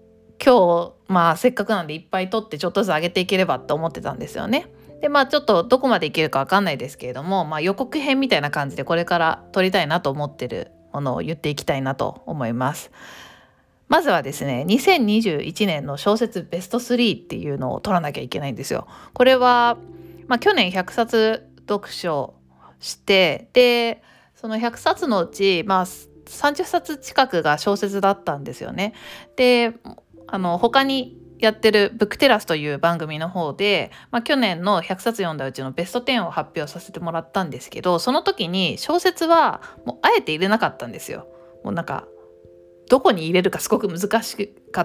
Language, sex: Japanese, female